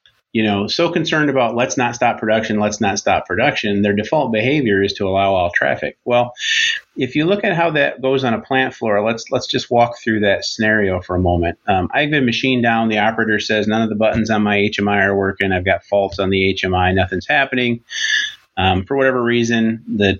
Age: 30-49